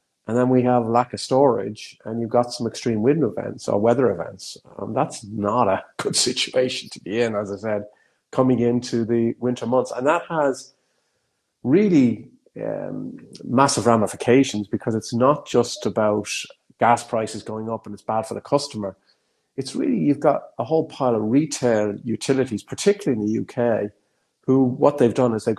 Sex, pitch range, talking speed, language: male, 110-130 Hz, 180 wpm, English